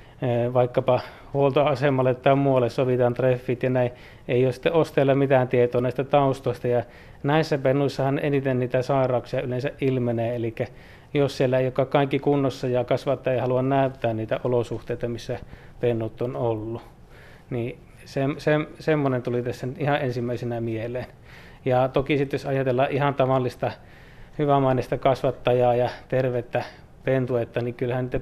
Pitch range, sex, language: 120-140 Hz, male, Finnish